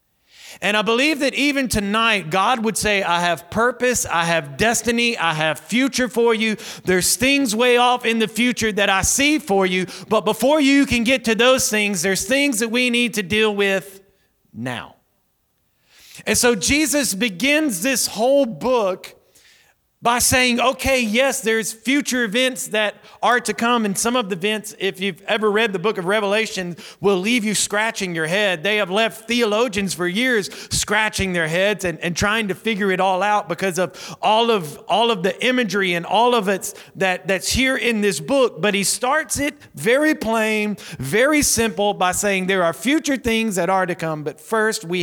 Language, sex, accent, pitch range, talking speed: English, male, American, 160-235 Hz, 190 wpm